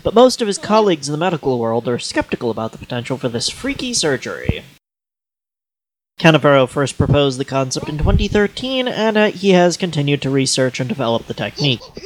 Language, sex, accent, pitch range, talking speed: English, male, American, 130-180 Hz, 180 wpm